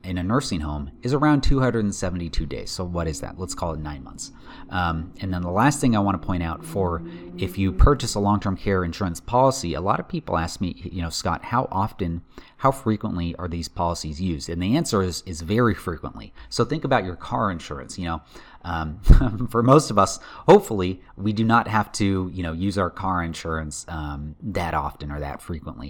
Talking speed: 210 wpm